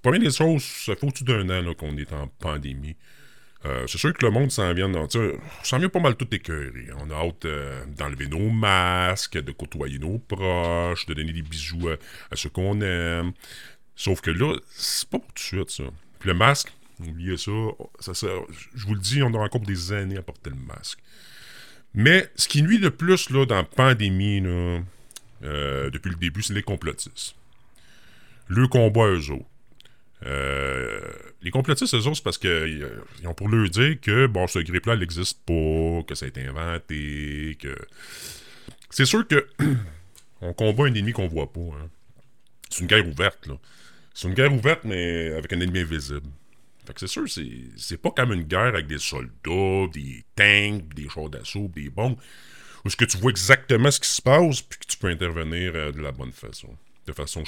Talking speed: 205 wpm